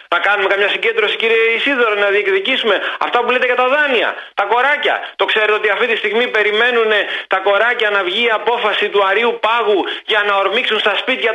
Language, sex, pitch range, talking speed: Greek, male, 175-240 Hz, 195 wpm